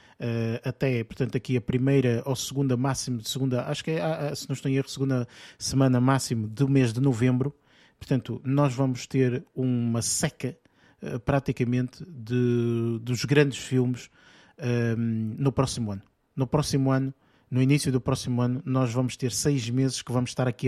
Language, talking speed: Portuguese, 165 wpm